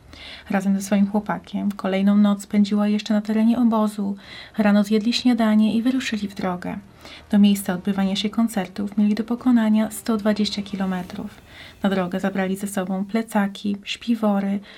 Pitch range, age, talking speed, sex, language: 200-220 Hz, 30-49, 140 wpm, female, Polish